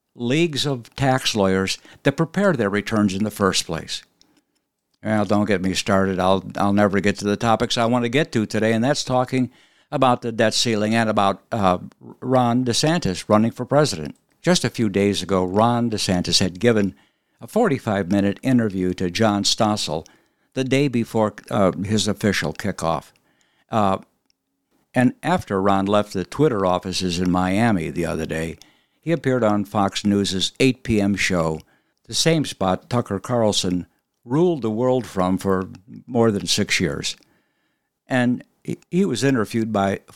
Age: 60-79